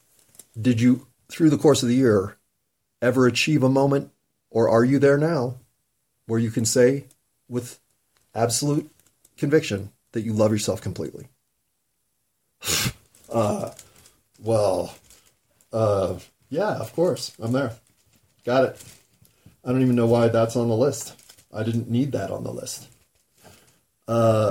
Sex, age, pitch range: male, 30-49, 110-130 Hz